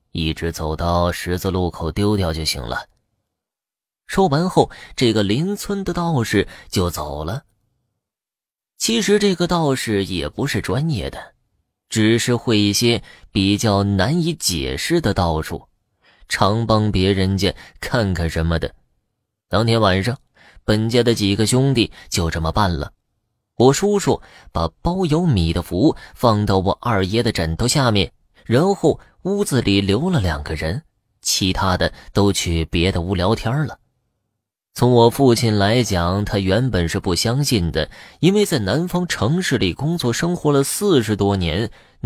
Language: Chinese